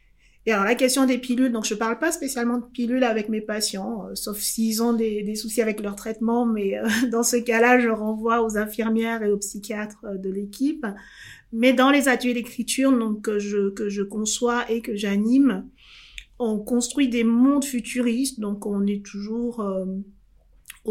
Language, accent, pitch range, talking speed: French, French, 210-245 Hz, 185 wpm